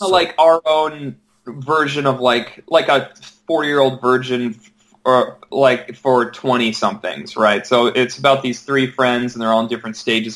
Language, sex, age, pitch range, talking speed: English, male, 20-39, 115-140 Hz, 160 wpm